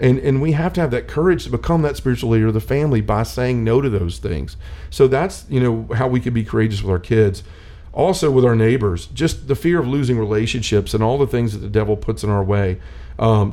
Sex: male